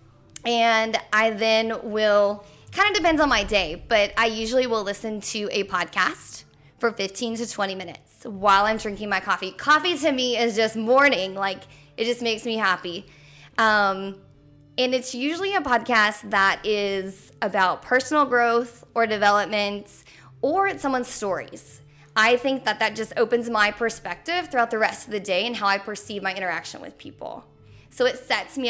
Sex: female